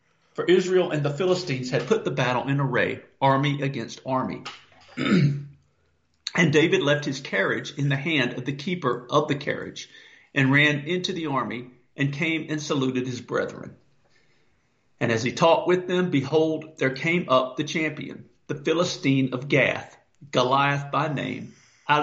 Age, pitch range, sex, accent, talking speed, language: 50-69, 130-160 Hz, male, American, 160 wpm, English